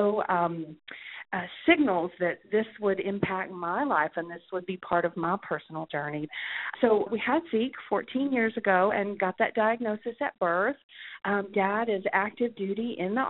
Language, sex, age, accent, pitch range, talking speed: English, female, 40-59, American, 185-235 Hz, 170 wpm